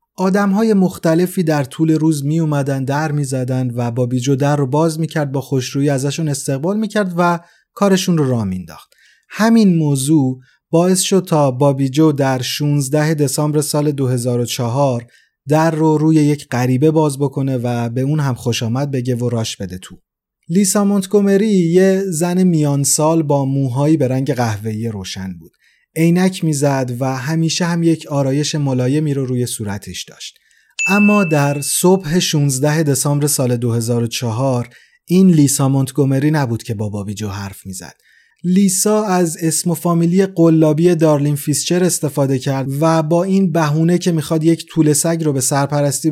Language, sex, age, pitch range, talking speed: Persian, male, 30-49, 135-170 Hz, 155 wpm